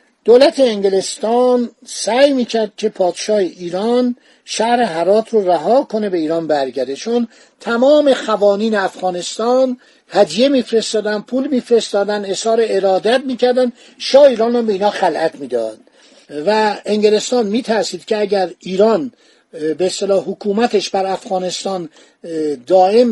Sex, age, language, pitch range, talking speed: male, 60-79, Persian, 195-245 Hz, 120 wpm